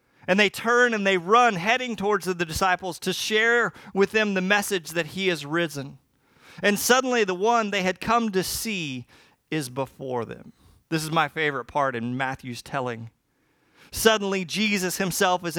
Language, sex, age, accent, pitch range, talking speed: English, male, 40-59, American, 130-180 Hz, 170 wpm